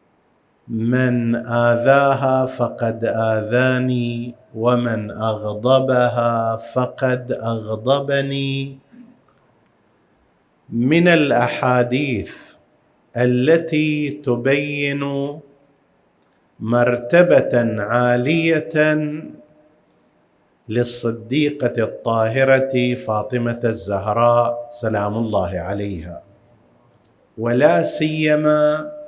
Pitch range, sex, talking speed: 115-140 Hz, male, 45 wpm